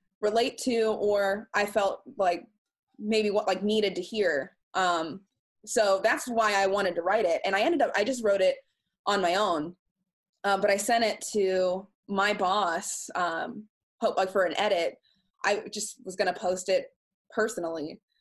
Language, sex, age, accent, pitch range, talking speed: English, female, 20-39, American, 180-215 Hz, 175 wpm